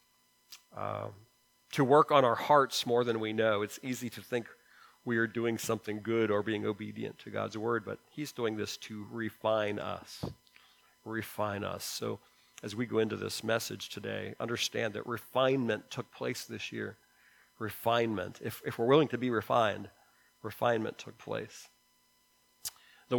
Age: 40-59